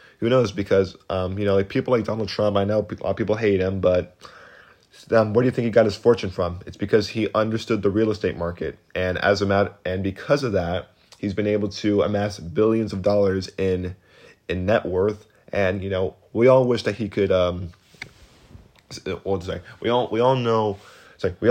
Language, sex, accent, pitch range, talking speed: English, male, American, 95-115 Hz, 220 wpm